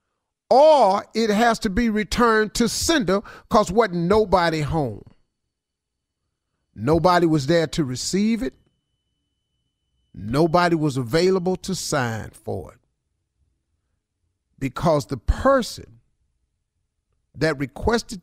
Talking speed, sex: 100 wpm, male